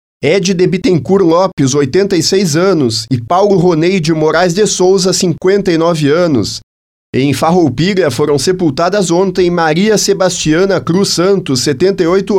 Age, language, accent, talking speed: 30-49, Portuguese, Brazilian, 120 wpm